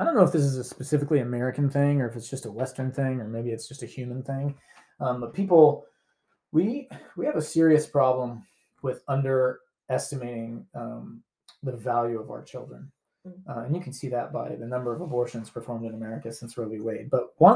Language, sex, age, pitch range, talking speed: English, male, 20-39, 120-145 Hz, 210 wpm